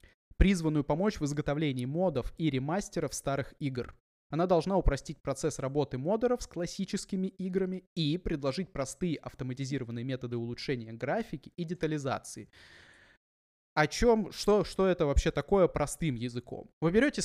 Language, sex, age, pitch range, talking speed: Russian, male, 20-39, 125-180 Hz, 130 wpm